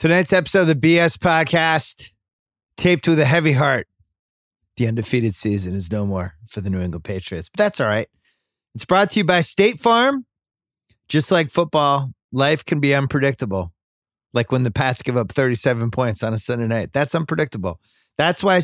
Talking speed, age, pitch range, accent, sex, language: 180 wpm, 30-49, 100-140 Hz, American, male, English